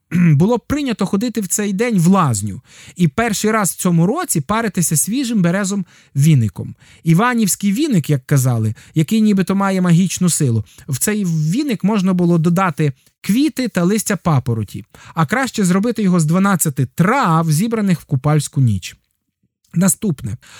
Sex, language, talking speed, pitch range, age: male, Ukrainian, 145 wpm, 150-200 Hz, 20-39